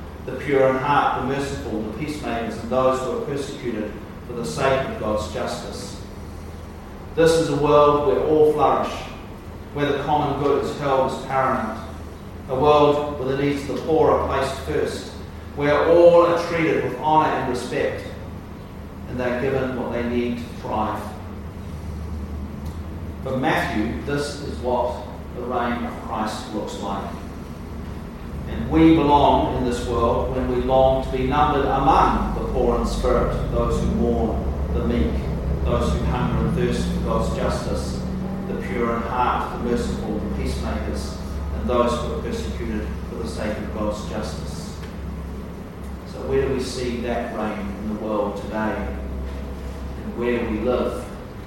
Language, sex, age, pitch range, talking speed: English, male, 40-59, 80-130 Hz, 160 wpm